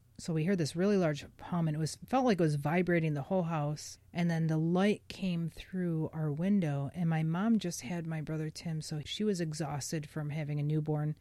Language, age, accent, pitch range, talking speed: English, 30-49, American, 155-190 Hz, 225 wpm